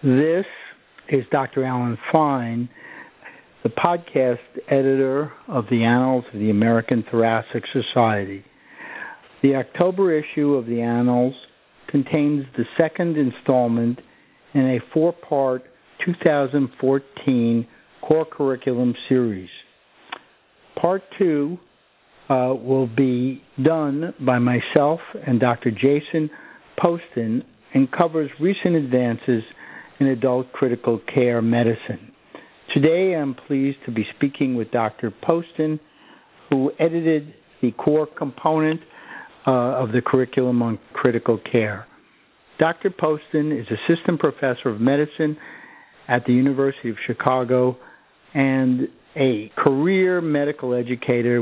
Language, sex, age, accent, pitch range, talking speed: English, male, 60-79, American, 120-150 Hz, 105 wpm